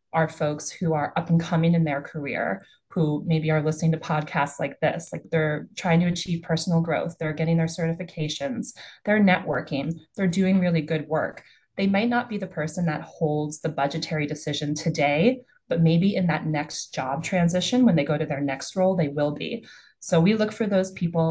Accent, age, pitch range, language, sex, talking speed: American, 20-39, 155-180 Hz, English, female, 200 wpm